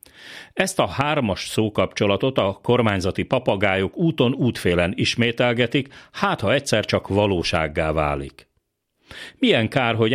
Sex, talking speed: male, 110 wpm